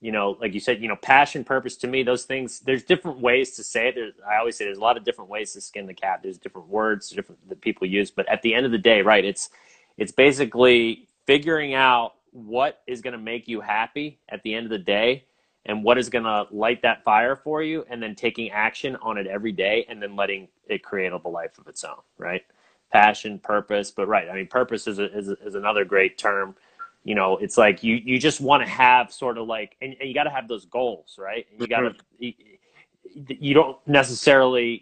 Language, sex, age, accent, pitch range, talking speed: English, male, 30-49, American, 110-130 Hz, 235 wpm